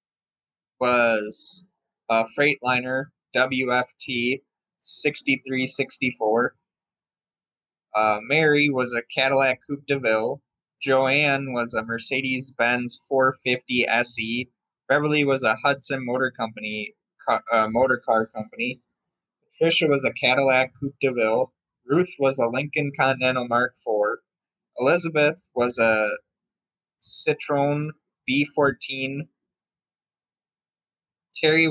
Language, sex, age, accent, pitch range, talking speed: English, male, 20-39, American, 125-145 Hz, 100 wpm